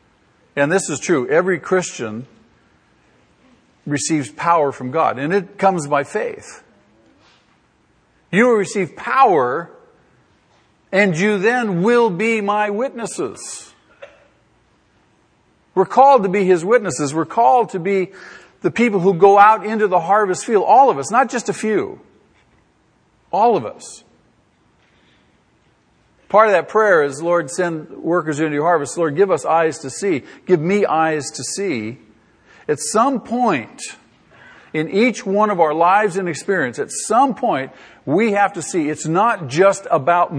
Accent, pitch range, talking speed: American, 160-215 Hz, 145 wpm